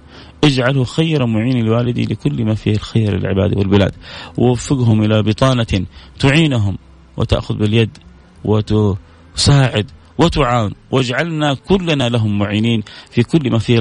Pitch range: 100-135 Hz